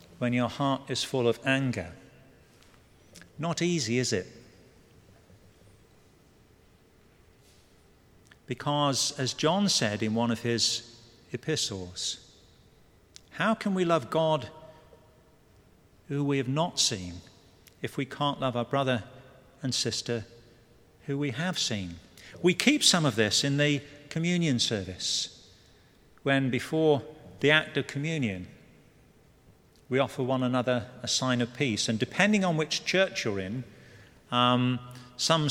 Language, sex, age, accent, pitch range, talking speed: English, male, 50-69, British, 115-145 Hz, 125 wpm